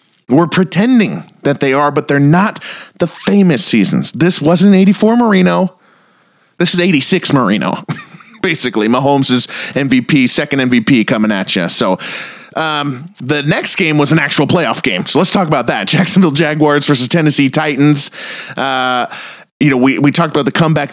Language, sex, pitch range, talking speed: English, male, 135-185 Hz, 160 wpm